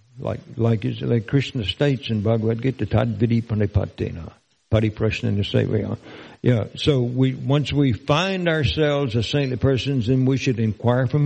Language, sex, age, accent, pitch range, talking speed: English, male, 60-79, American, 115-135 Hz, 150 wpm